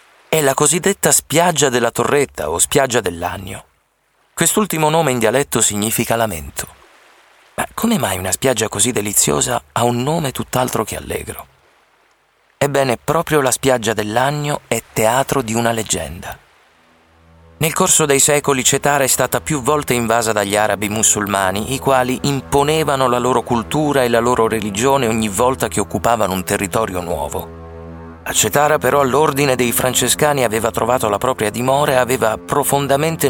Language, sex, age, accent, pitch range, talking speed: Italian, male, 30-49, native, 100-135 Hz, 150 wpm